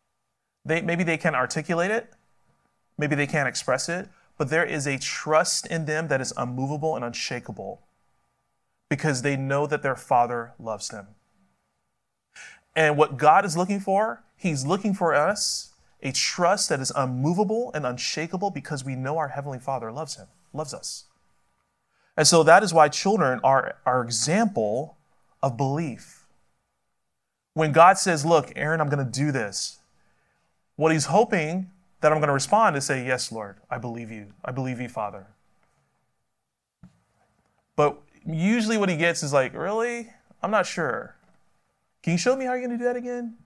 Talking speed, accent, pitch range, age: 165 wpm, American, 125-175 Hz, 30-49